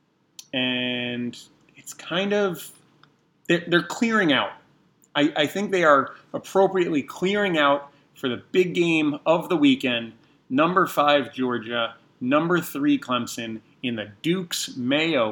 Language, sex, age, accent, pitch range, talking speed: English, male, 30-49, American, 120-165 Hz, 130 wpm